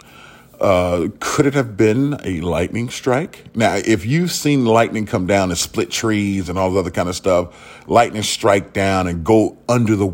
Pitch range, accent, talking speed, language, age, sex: 95-130 Hz, American, 190 wpm, English, 40-59, male